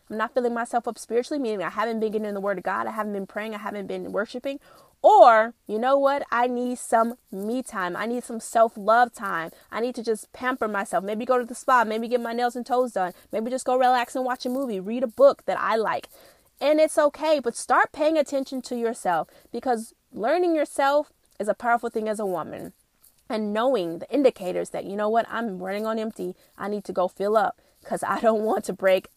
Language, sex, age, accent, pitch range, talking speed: English, female, 20-39, American, 215-280 Hz, 235 wpm